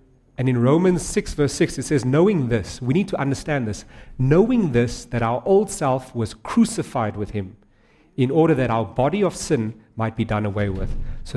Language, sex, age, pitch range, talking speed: English, male, 40-59, 115-160 Hz, 200 wpm